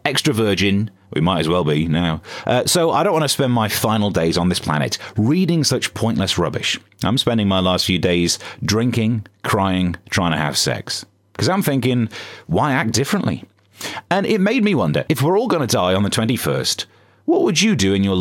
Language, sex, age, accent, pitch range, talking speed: English, male, 30-49, British, 100-140 Hz, 210 wpm